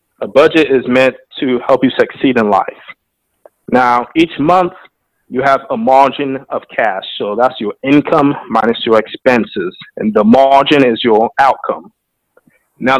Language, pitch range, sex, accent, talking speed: English, 130-150 Hz, male, American, 150 wpm